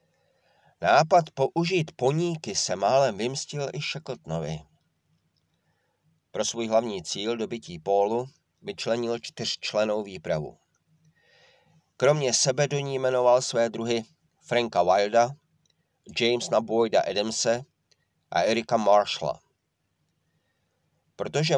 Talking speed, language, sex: 90 wpm, Czech, male